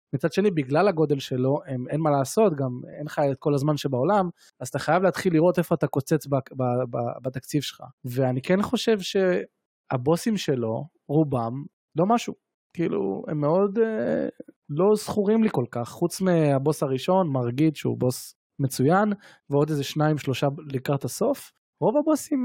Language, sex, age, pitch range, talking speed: Hebrew, male, 20-39, 135-185 Hz, 165 wpm